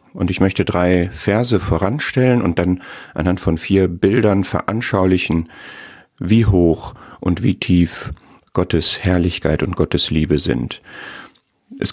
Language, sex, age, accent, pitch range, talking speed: German, male, 40-59, German, 85-105 Hz, 125 wpm